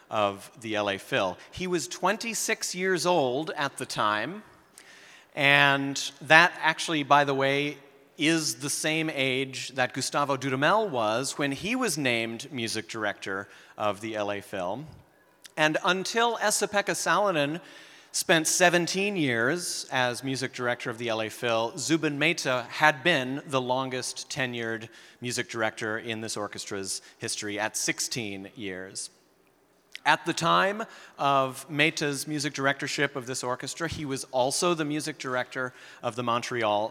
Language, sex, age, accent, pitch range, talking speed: English, male, 30-49, American, 115-155 Hz, 140 wpm